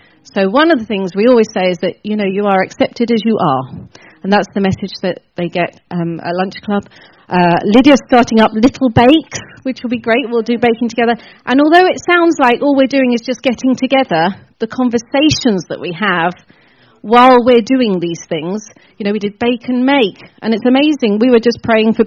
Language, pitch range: English, 200-260 Hz